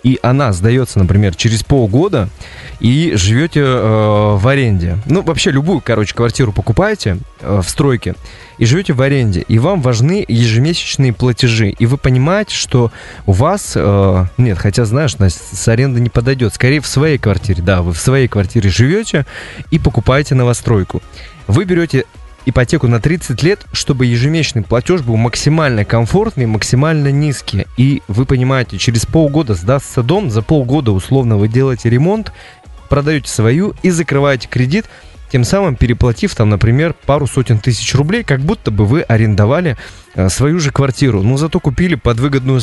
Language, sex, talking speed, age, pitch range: Russian, male, 160 wpm, 20-39, 110-140 Hz